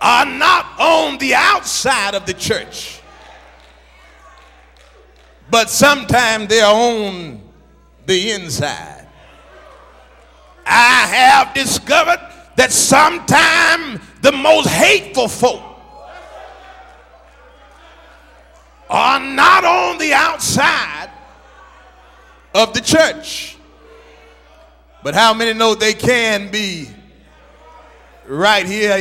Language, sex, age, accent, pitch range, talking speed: English, male, 40-59, American, 200-285 Hz, 85 wpm